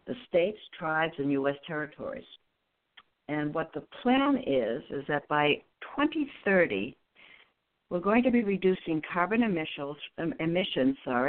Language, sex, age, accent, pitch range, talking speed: English, female, 60-79, American, 145-200 Hz, 115 wpm